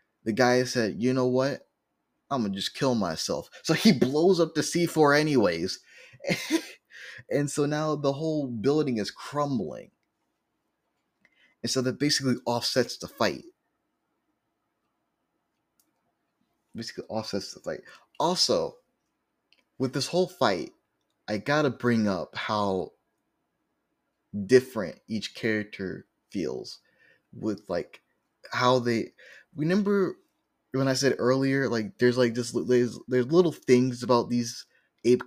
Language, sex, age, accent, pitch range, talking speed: English, male, 20-39, American, 115-150 Hz, 125 wpm